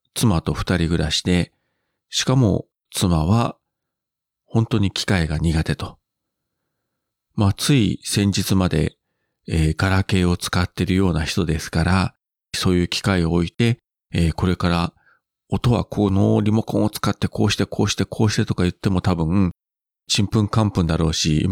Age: 40-59